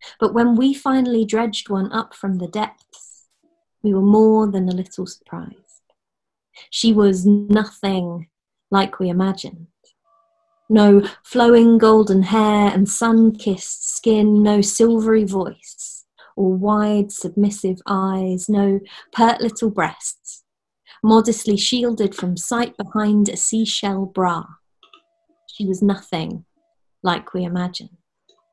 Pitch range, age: 190-225 Hz, 30-49